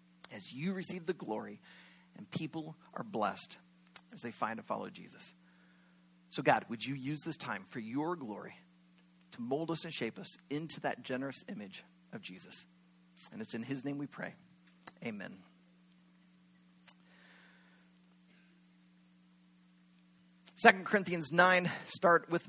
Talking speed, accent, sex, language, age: 135 wpm, American, male, English, 40-59